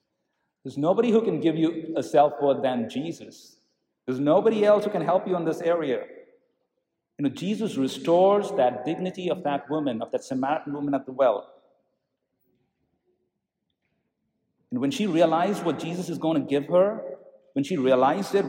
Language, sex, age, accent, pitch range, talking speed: English, male, 50-69, Indian, 145-205 Hz, 165 wpm